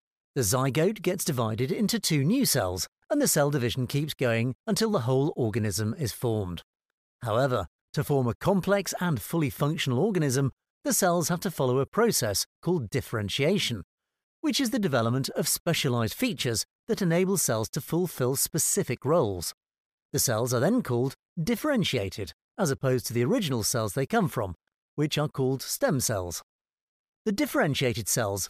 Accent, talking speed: British, 160 wpm